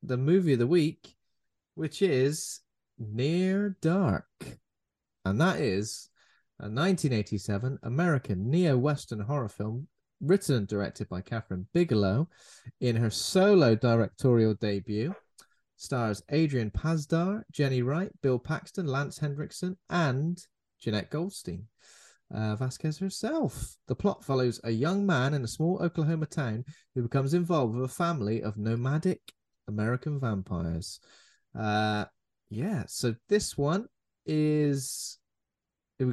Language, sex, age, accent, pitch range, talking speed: English, male, 30-49, British, 110-170 Hz, 120 wpm